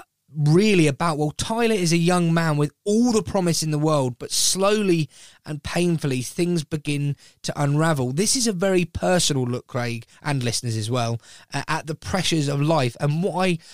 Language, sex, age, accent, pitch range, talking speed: English, male, 20-39, British, 135-175 Hz, 190 wpm